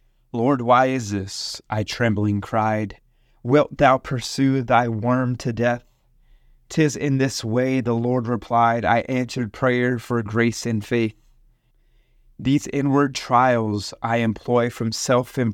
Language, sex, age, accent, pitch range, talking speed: English, male, 30-49, American, 115-130 Hz, 140 wpm